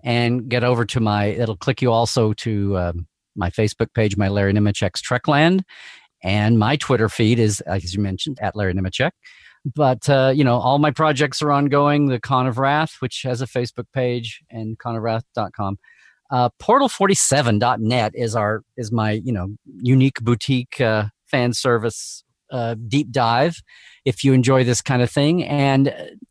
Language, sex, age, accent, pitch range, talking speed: English, male, 40-59, American, 105-135 Hz, 165 wpm